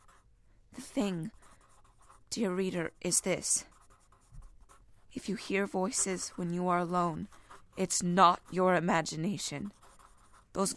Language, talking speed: English, 105 wpm